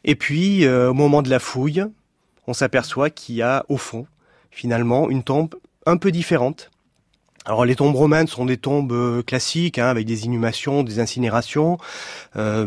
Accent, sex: French, male